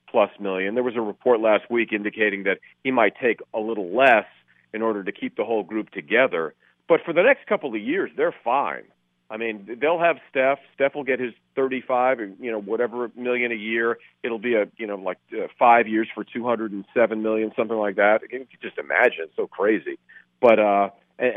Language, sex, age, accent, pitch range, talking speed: English, male, 40-59, American, 105-140 Hz, 210 wpm